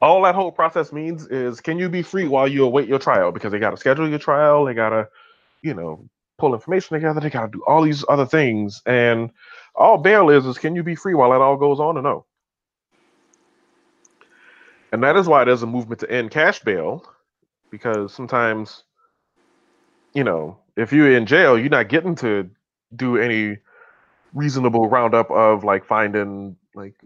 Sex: male